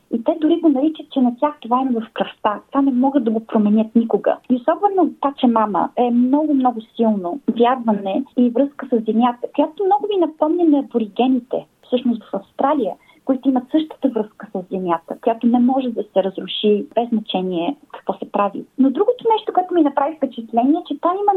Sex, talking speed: female, 195 wpm